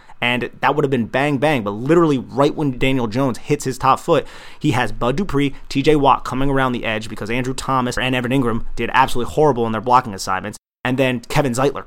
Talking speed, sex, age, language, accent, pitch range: 220 wpm, male, 30-49, English, American, 115-140 Hz